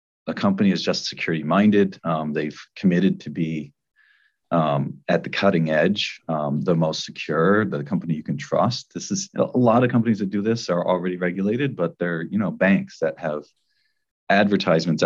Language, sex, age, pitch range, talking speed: English, male, 40-59, 80-100 Hz, 180 wpm